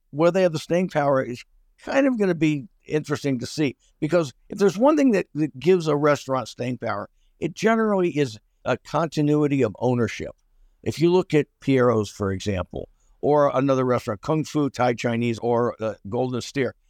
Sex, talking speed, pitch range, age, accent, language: male, 185 wpm, 115-145 Hz, 50-69, American, English